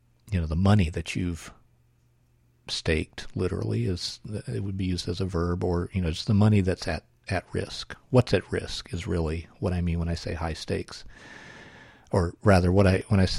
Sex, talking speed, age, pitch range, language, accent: male, 200 wpm, 50-69, 90-115 Hz, English, American